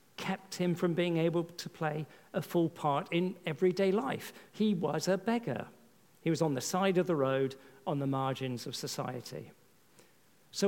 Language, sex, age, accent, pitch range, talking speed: English, male, 50-69, British, 130-180 Hz, 175 wpm